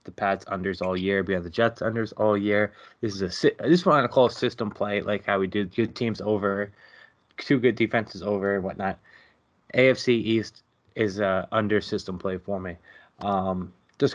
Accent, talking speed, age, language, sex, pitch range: American, 205 wpm, 20-39, English, male, 100-125 Hz